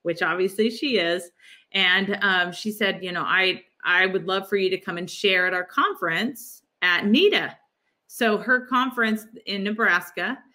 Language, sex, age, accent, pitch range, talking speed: English, female, 30-49, American, 175-225 Hz, 170 wpm